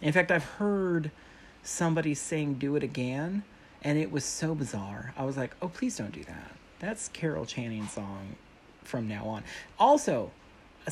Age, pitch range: 40-59, 115-165 Hz